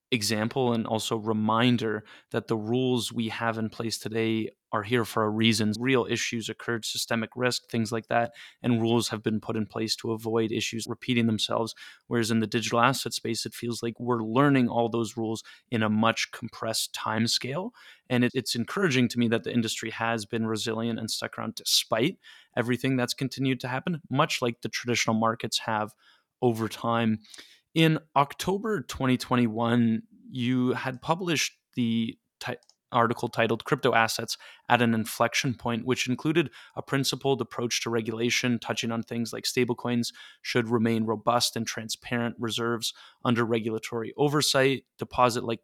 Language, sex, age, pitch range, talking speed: English, male, 20-39, 115-125 Hz, 160 wpm